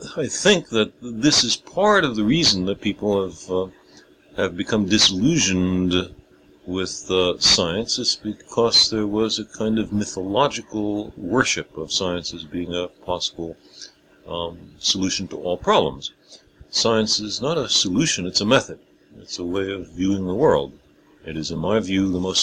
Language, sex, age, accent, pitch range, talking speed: English, male, 60-79, American, 90-110 Hz, 165 wpm